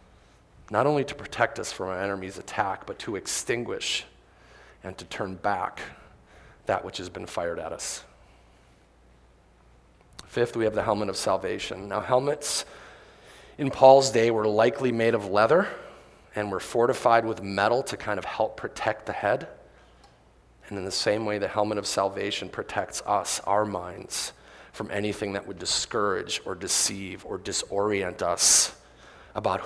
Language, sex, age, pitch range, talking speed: English, male, 30-49, 90-115 Hz, 155 wpm